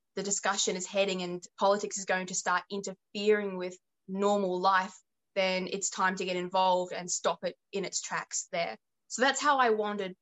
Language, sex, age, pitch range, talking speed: English, female, 20-39, 185-220 Hz, 190 wpm